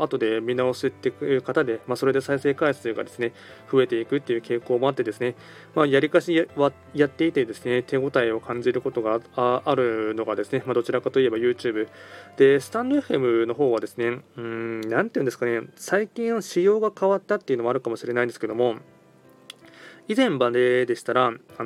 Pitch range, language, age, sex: 120-175 Hz, Japanese, 20-39, male